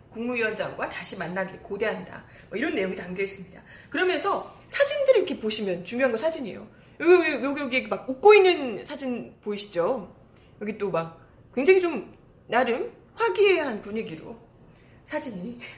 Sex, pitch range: female, 200-310 Hz